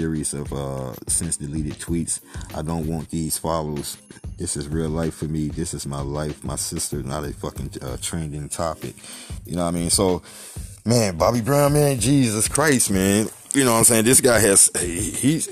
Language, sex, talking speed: English, male, 195 wpm